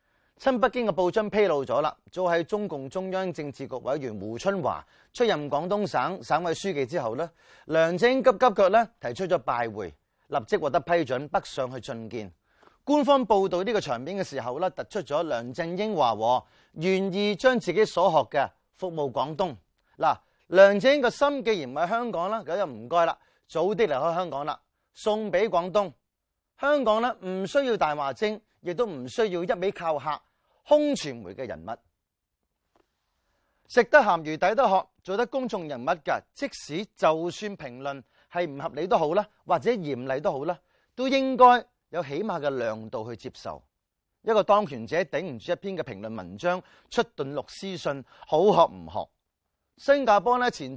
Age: 30-49